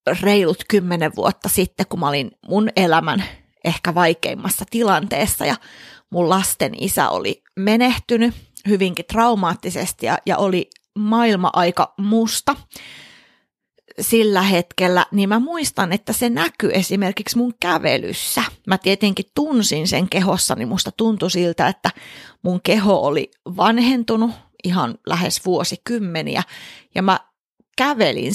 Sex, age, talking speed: female, 30-49, 115 wpm